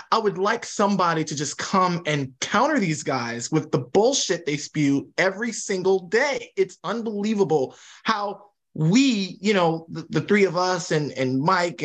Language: English